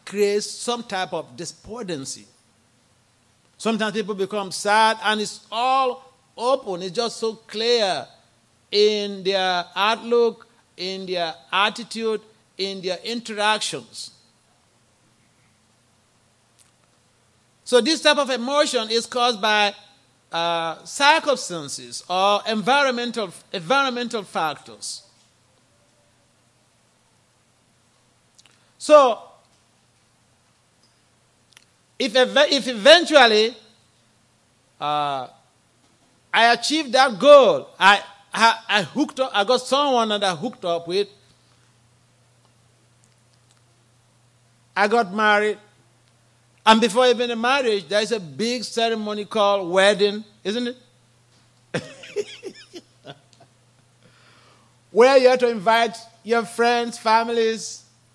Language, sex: English, male